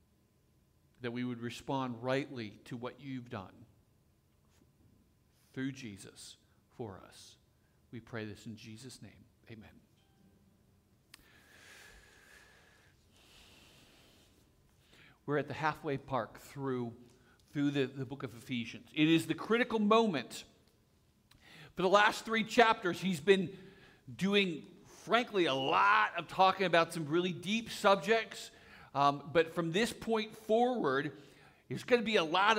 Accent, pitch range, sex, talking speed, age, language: American, 135-210 Hz, male, 125 wpm, 50-69, English